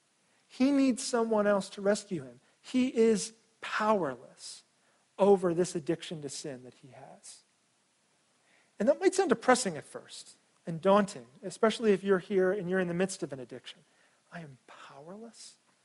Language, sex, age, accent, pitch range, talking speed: English, male, 40-59, American, 160-210 Hz, 160 wpm